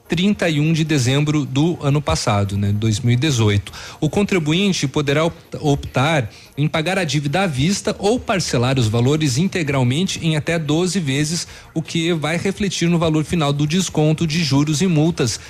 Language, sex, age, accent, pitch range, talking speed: Portuguese, male, 40-59, Brazilian, 135-175 Hz, 155 wpm